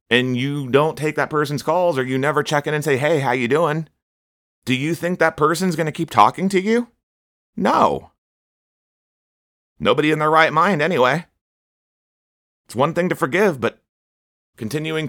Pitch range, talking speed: 95-145 Hz, 170 wpm